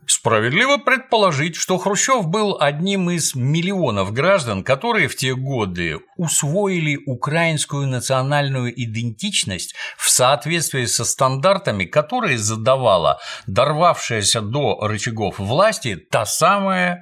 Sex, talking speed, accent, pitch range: male, 100 wpm, native, 105-165 Hz